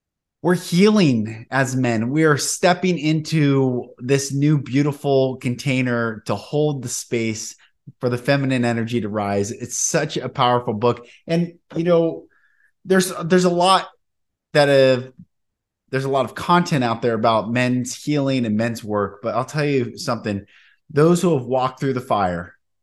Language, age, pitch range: English, 30-49, 115-155 Hz